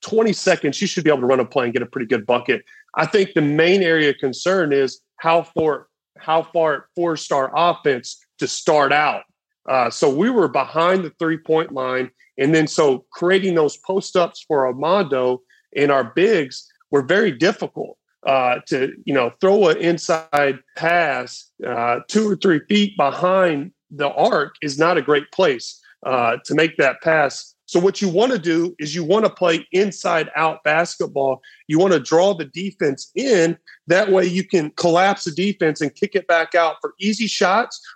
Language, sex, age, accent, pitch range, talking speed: English, male, 40-59, American, 145-190 Hz, 190 wpm